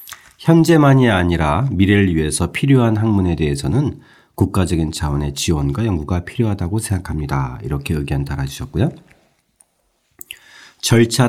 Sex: male